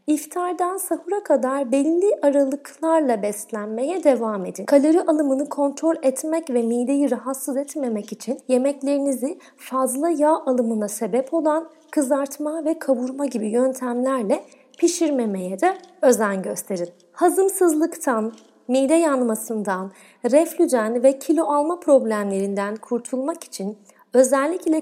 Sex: female